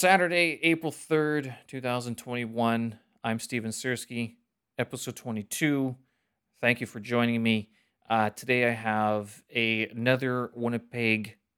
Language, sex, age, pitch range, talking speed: English, male, 30-49, 105-125 Hz, 110 wpm